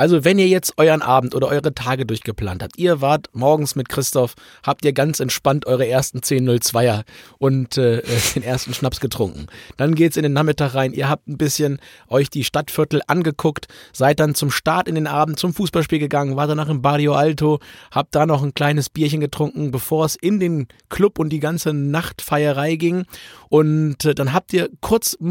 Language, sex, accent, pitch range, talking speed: German, male, German, 135-165 Hz, 195 wpm